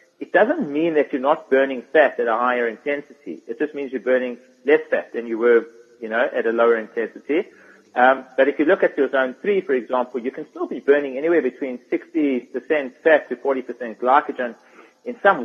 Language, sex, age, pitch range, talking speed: English, male, 30-49, 125-170 Hz, 205 wpm